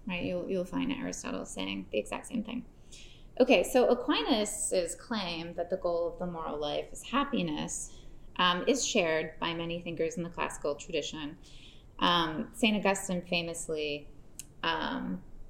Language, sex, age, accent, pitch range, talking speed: English, female, 20-39, American, 170-235 Hz, 145 wpm